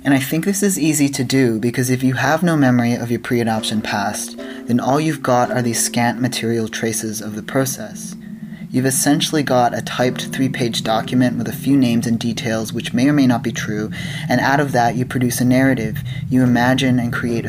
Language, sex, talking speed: English, male, 215 wpm